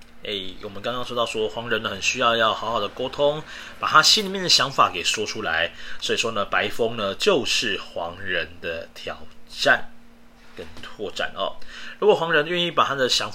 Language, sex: Chinese, male